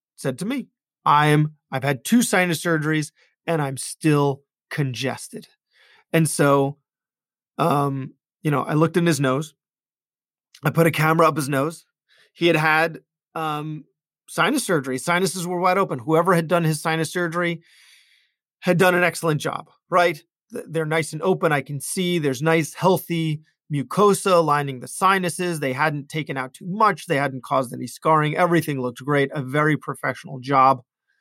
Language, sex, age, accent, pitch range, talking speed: English, male, 30-49, American, 145-180 Hz, 165 wpm